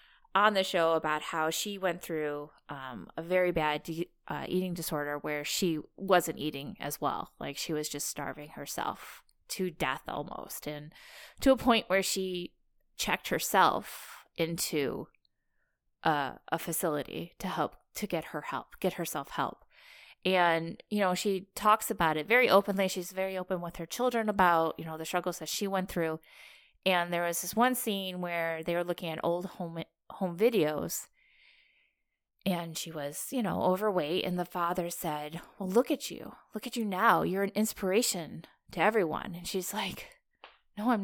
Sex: female